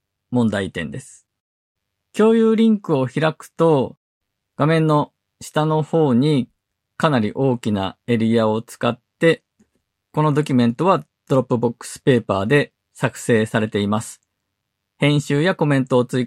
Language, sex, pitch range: Japanese, male, 105-150 Hz